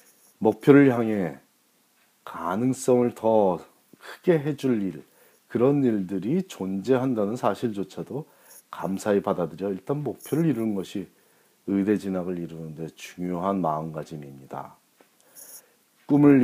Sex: male